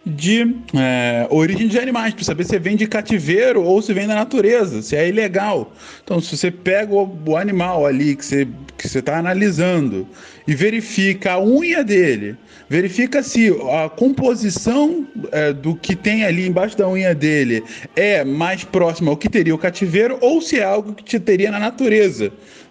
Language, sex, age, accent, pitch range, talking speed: Portuguese, male, 20-39, Brazilian, 150-225 Hz, 175 wpm